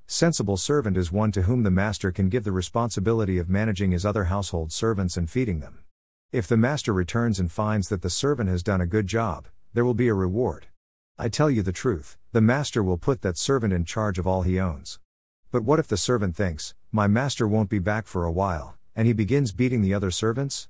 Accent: American